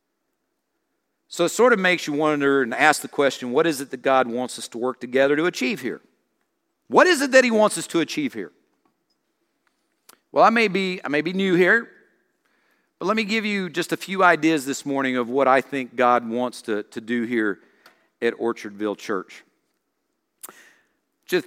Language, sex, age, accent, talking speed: English, male, 50-69, American, 190 wpm